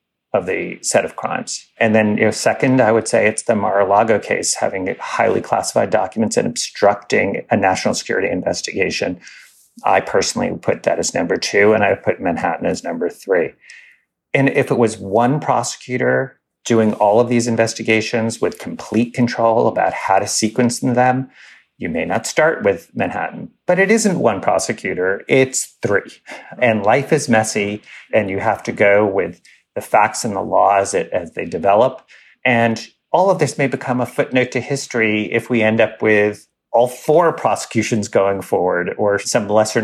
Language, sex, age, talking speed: English, male, 40-59, 175 wpm